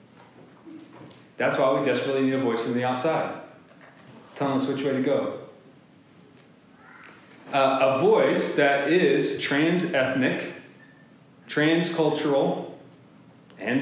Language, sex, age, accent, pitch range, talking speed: English, male, 30-49, American, 120-145 Hz, 105 wpm